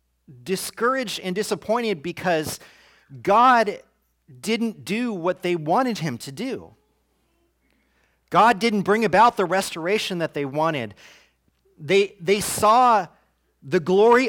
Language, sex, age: English, male, 40-59